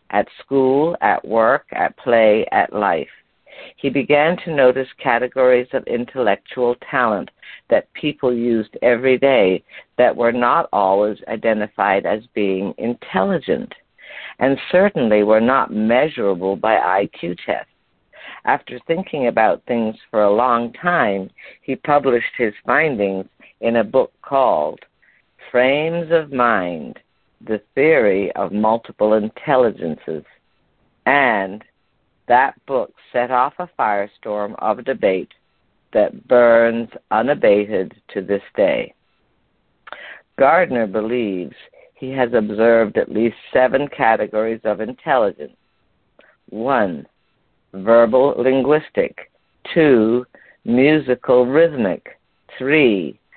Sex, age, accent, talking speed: female, 50-69, American, 105 wpm